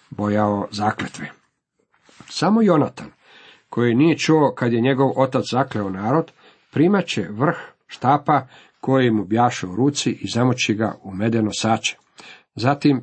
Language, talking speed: Croatian, 135 wpm